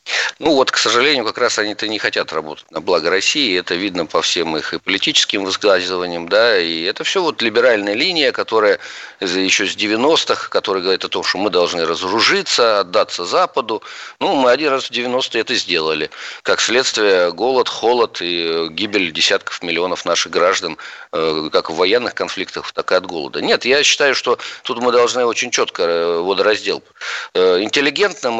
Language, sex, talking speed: Russian, male, 165 wpm